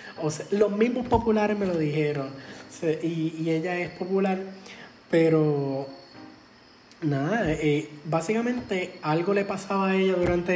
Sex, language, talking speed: male, Spanish, 120 wpm